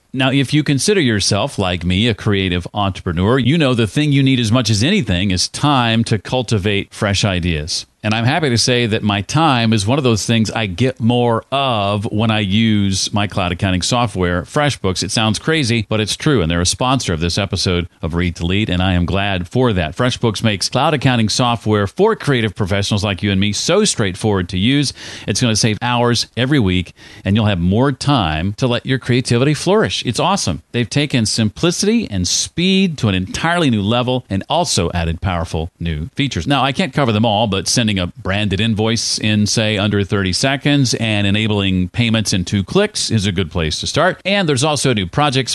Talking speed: 210 wpm